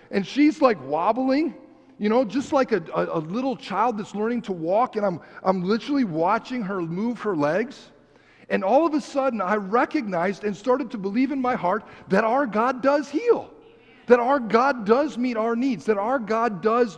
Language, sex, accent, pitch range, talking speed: English, male, American, 160-235 Hz, 200 wpm